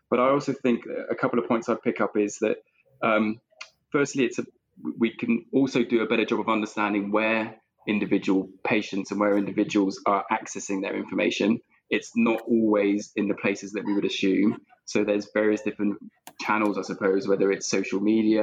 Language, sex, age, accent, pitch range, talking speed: English, male, 20-39, British, 100-110 Hz, 185 wpm